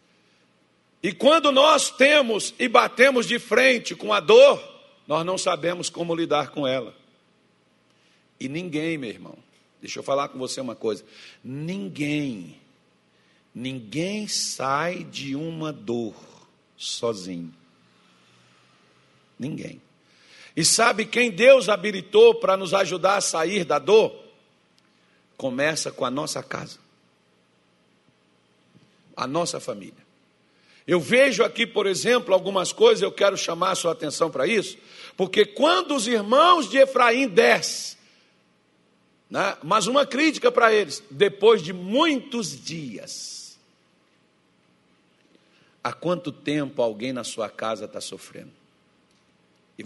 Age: 50-69